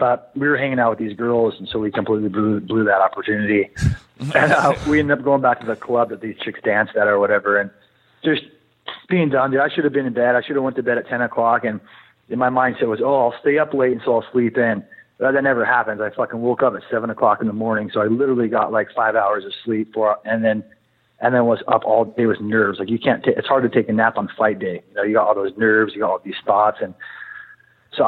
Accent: American